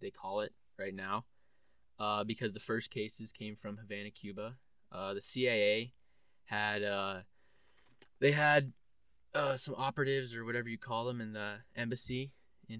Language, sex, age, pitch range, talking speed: English, male, 20-39, 100-120 Hz, 155 wpm